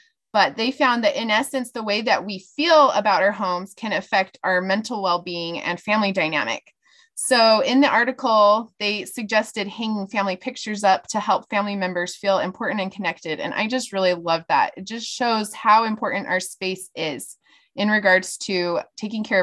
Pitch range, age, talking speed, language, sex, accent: 185-240 Hz, 20-39, 180 wpm, English, female, American